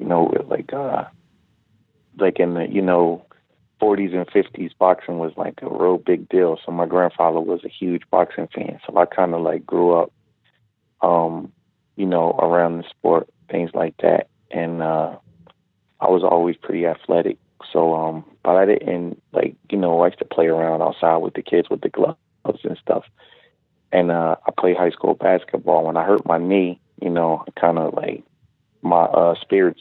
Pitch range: 85-90 Hz